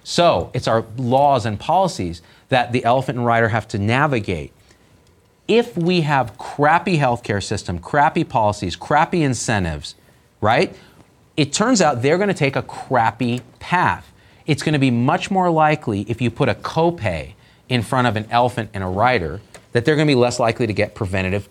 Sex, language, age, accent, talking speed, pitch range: male, English, 40-59, American, 175 wpm, 105-145 Hz